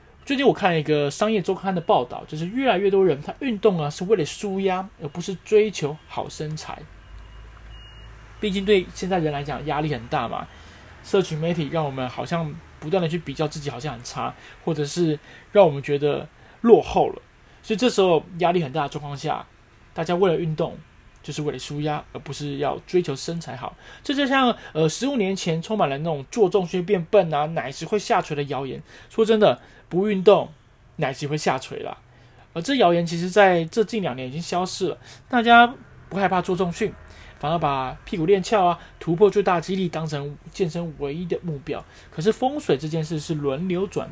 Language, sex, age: Chinese, male, 20-39